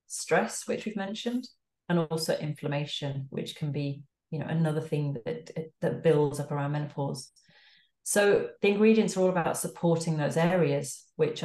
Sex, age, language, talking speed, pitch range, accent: female, 30-49, English, 155 wpm, 150-180 Hz, British